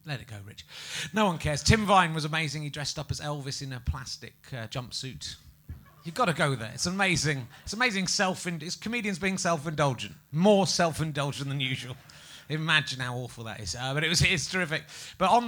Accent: British